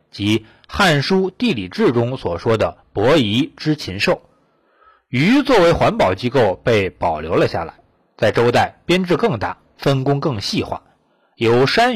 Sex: male